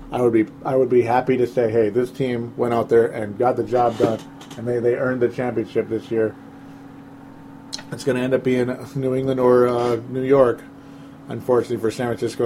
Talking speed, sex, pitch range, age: 210 wpm, male, 115-135 Hz, 40-59